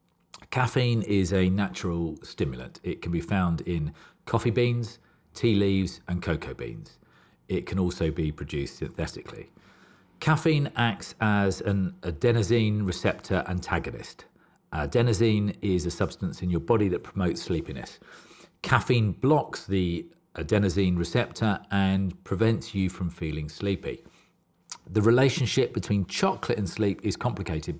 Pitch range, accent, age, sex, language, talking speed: 90-115 Hz, British, 40-59, male, English, 125 wpm